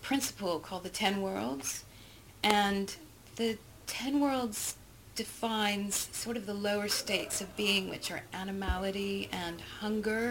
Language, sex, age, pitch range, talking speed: English, female, 40-59, 175-220 Hz, 130 wpm